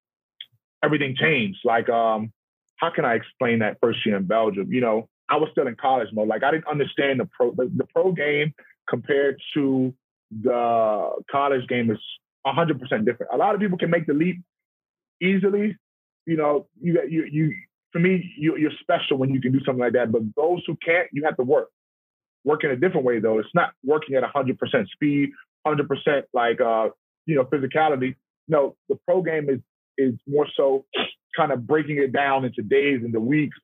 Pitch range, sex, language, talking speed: 130-160 Hz, male, English, 195 wpm